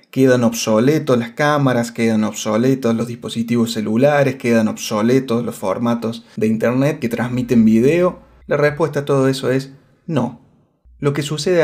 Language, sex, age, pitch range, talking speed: Spanish, male, 20-39, 120-150 Hz, 145 wpm